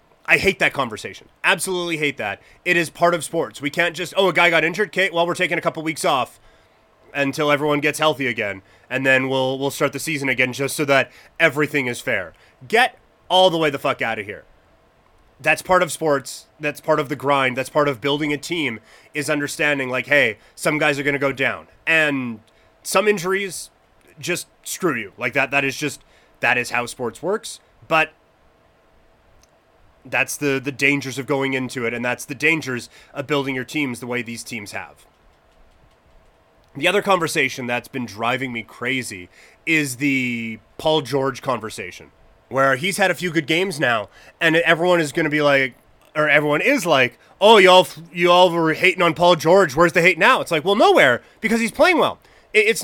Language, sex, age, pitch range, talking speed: English, male, 30-49, 130-170 Hz, 200 wpm